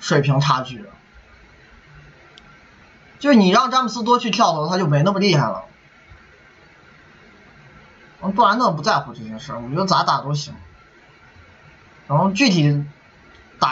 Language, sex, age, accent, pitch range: Chinese, male, 20-39, native, 140-185 Hz